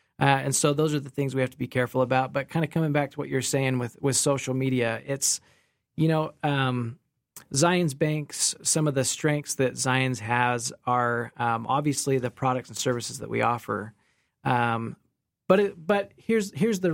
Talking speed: 200 wpm